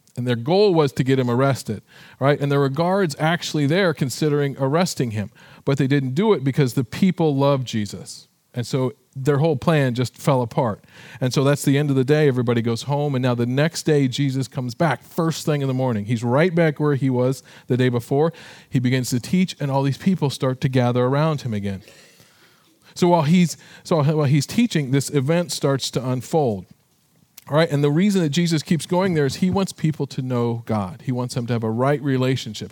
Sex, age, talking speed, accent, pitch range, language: male, 40-59, 220 wpm, American, 125-160 Hz, English